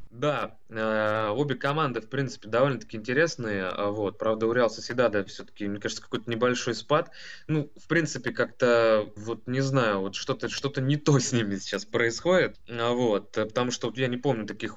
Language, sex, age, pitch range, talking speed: Russian, male, 20-39, 100-120 Hz, 180 wpm